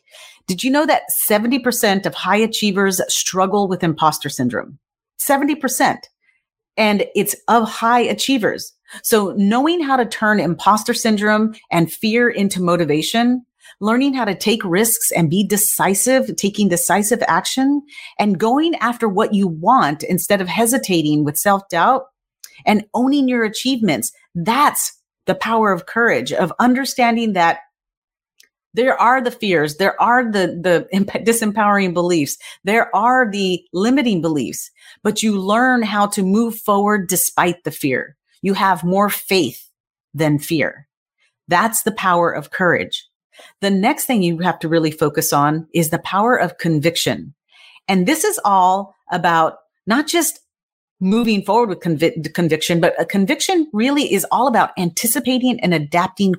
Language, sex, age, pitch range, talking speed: English, female, 40-59, 175-235 Hz, 145 wpm